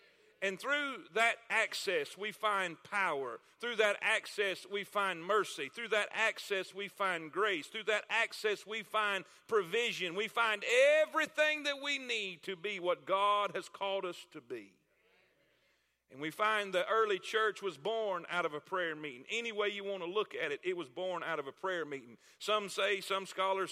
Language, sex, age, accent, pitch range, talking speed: English, male, 40-59, American, 190-240 Hz, 185 wpm